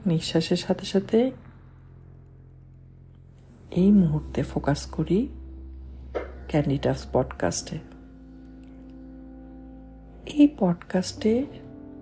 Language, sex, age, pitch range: Bengali, female, 50-69, 125-185 Hz